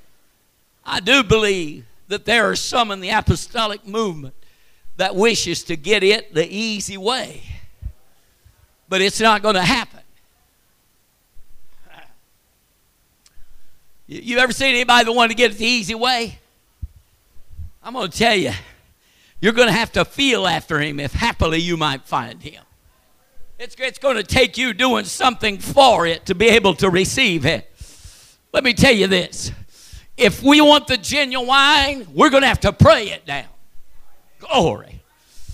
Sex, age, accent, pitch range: male, 50-69, American, 185-285 Hz